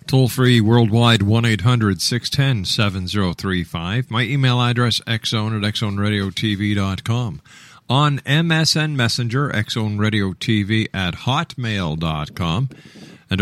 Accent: American